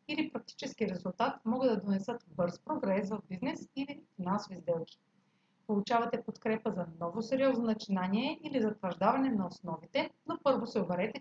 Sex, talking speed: female, 145 wpm